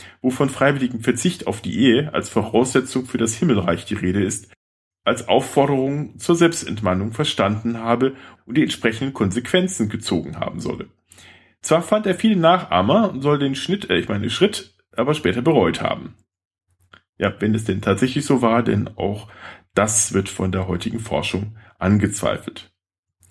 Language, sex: German, male